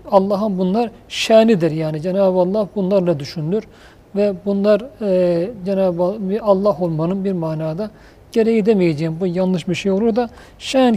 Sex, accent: male, native